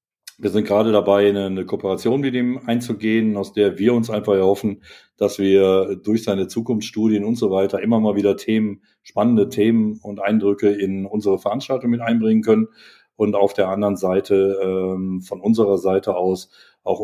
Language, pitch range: German, 100-115 Hz